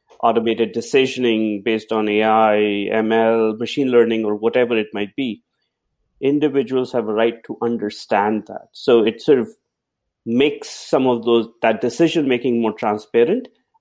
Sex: male